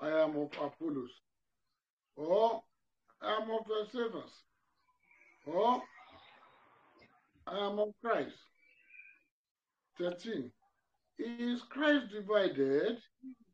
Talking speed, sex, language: 80 wpm, male, English